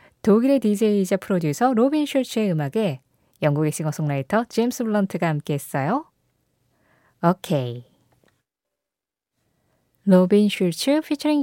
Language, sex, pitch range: Korean, female, 160-240 Hz